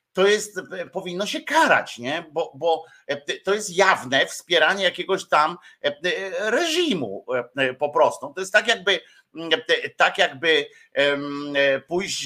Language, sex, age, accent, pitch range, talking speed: Polish, male, 50-69, native, 145-200 Hz, 120 wpm